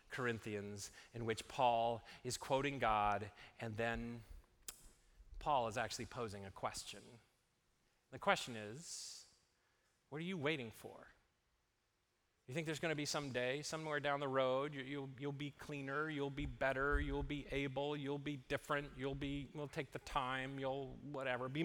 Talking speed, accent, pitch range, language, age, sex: 160 wpm, American, 120-170 Hz, English, 30-49, male